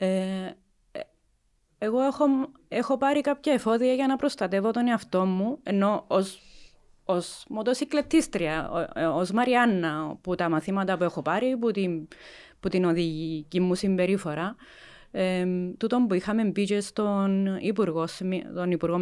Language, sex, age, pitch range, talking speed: Greek, female, 20-39, 165-220 Hz, 135 wpm